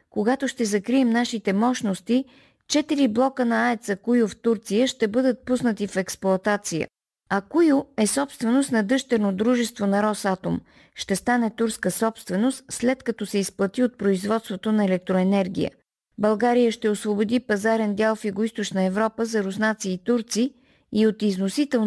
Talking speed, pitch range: 145 wpm, 205-245 Hz